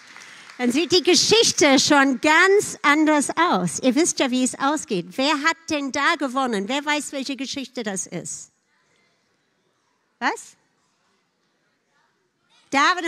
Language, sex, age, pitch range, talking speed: German, female, 50-69, 235-305 Hz, 125 wpm